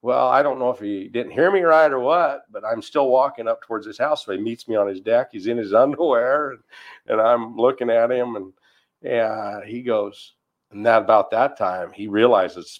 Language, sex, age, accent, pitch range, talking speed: English, male, 50-69, American, 100-120 Hz, 225 wpm